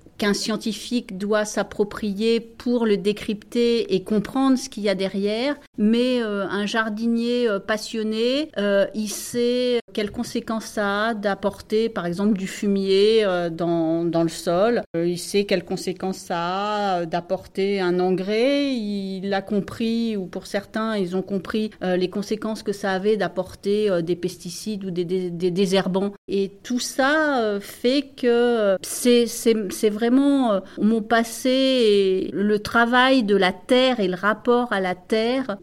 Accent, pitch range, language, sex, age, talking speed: French, 190-235 Hz, French, female, 40-59, 160 wpm